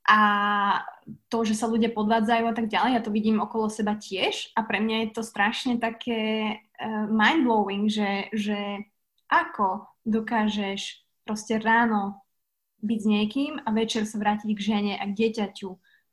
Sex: female